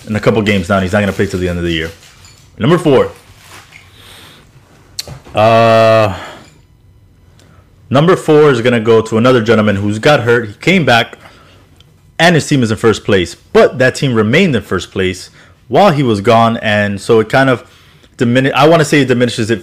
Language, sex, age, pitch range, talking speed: English, male, 20-39, 95-130 Hz, 200 wpm